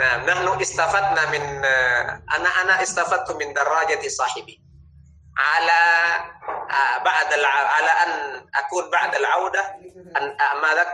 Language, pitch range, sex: Indonesian, 170-280 Hz, male